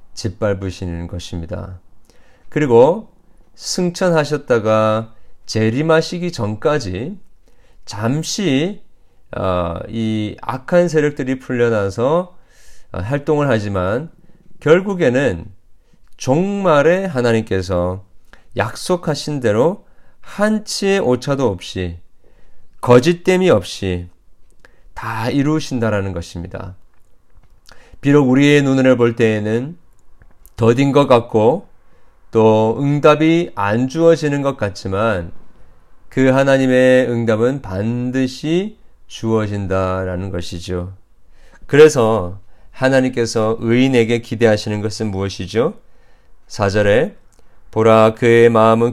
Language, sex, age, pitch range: Korean, male, 40-59, 95-140 Hz